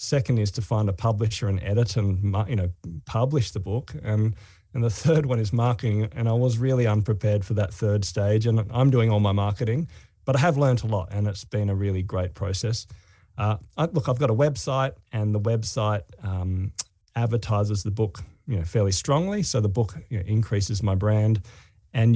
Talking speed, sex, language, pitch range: 200 wpm, male, English, 100-120 Hz